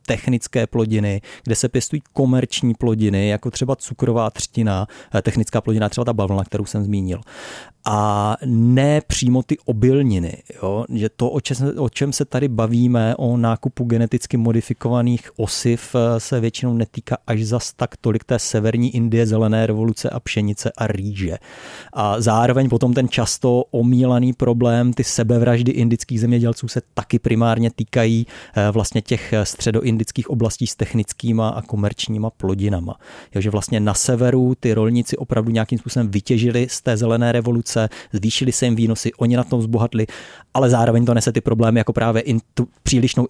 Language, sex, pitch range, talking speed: Czech, male, 110-125 Hz, 155 wpm